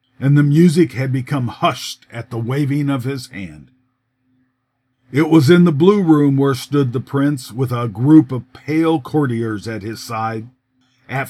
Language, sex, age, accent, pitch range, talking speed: English, male, 50-69, American, 125-155 Hz, 170 wpm